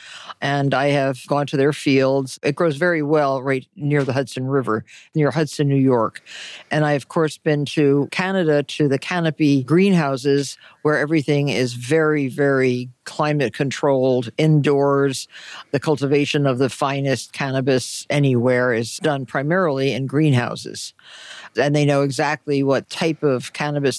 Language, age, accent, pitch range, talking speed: English, 60-79, American, 130-150 Hz, 150 wpm